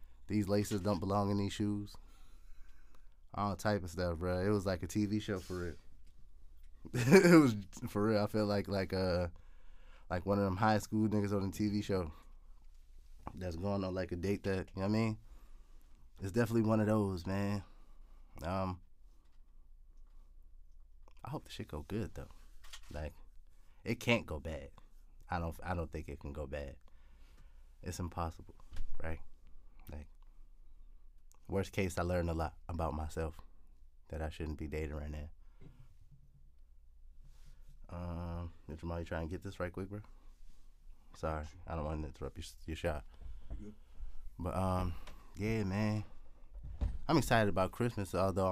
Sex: male